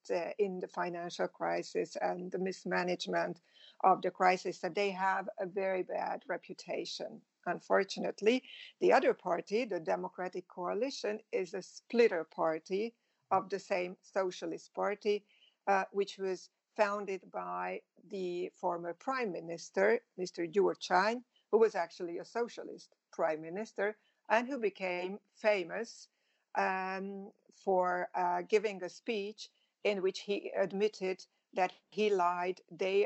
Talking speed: 130 wpm